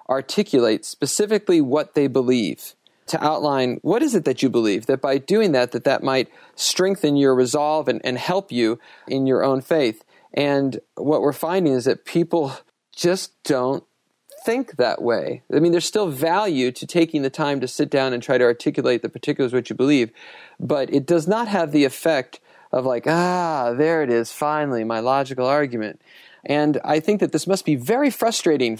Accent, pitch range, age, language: American, 125-160 Hz, 40-59, English